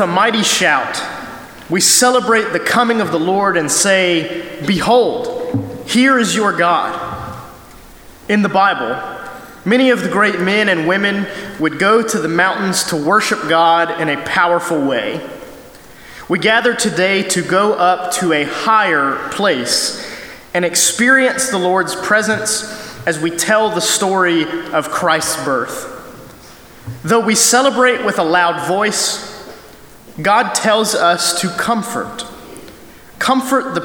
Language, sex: English, male